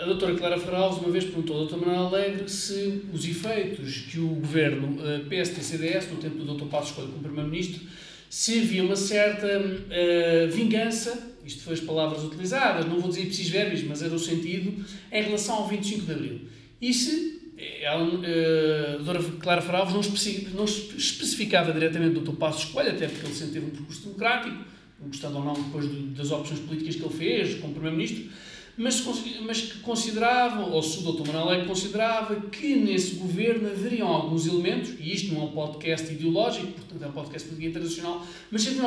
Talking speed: 180 wpm